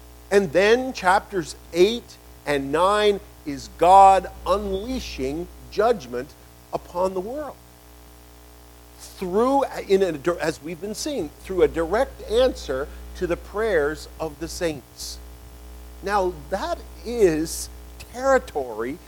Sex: male